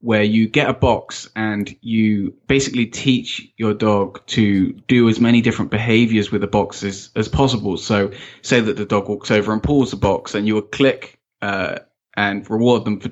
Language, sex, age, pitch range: English, male, 10-29, 105-125 Hz